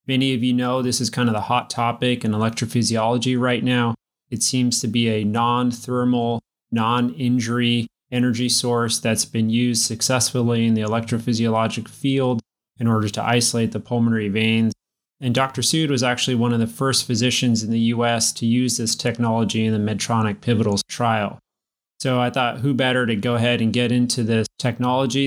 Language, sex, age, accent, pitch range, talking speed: English, male, 30-49, American, 115-125 Hz, 175 wpm